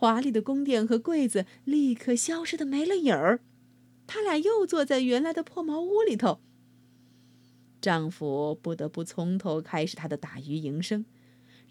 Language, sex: Chinese, female